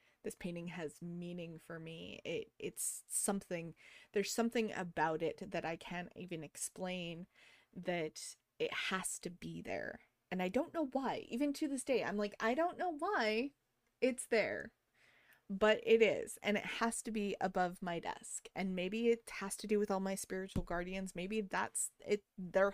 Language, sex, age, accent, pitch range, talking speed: English, female, 20-39, American, 180-230 Hz, 175 wpm